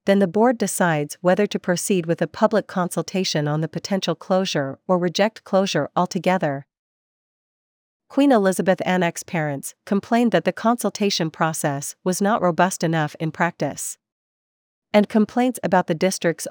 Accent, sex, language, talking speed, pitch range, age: American, female, English, 140 wpm, 160-200 Hz, 40-59